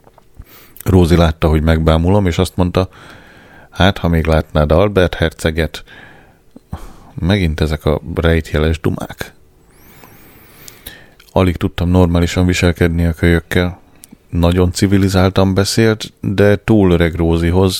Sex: male